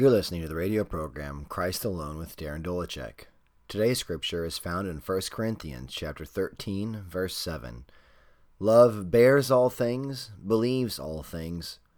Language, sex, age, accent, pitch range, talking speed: English, male, 30-49, American, 80-110 Hz, 145 wpm